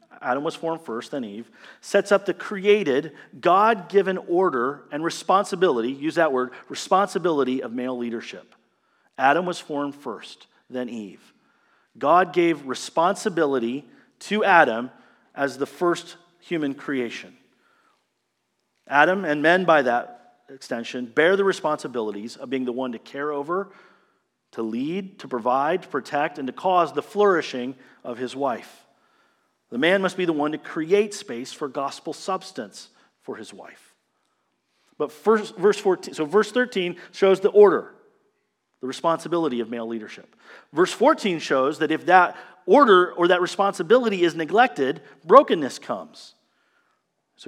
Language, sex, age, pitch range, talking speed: English, male, 40-59, 135-195 Hz, 140 wpm